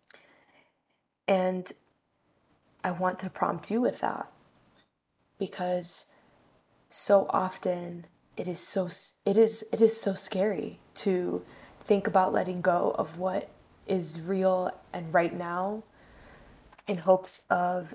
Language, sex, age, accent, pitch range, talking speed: English, female, 10-29, American, 175-195 Hz, 115 wpm